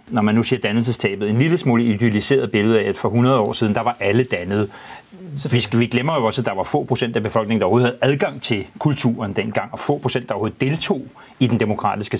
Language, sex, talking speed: Danish, male, 240 wpm